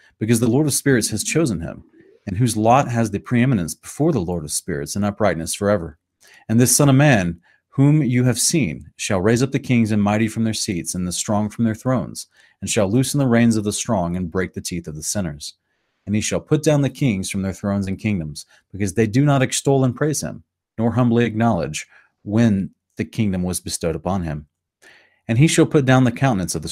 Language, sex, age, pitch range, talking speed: English, male, 30-49, 90-120 Hz, 225 wpm